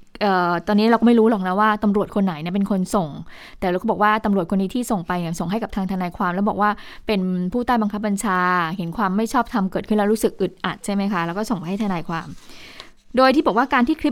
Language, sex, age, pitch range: Thai, female, 20-39, 190-235 Hz